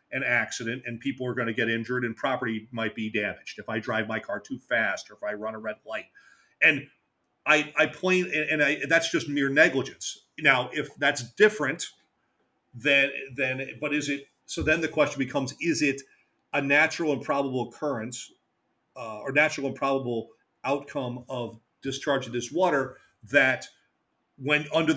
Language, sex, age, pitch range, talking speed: English, male, 40-59, 125-150 Hz, 175 wpm